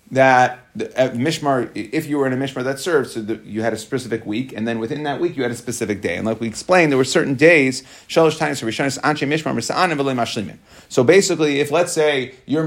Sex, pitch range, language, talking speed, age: male, 120-155 Hz, English, 205 wpm, 30-49